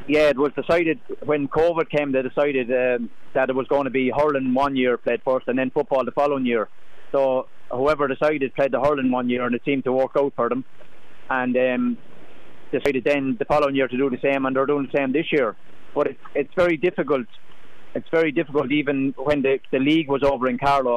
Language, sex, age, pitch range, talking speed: English, male, 30-49, 125-145 Hz, 225 wpm